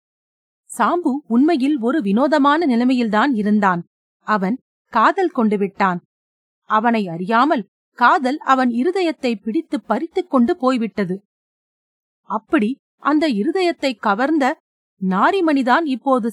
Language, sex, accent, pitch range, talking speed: Tamil, female, native, 225-305 Hz, 90 wpm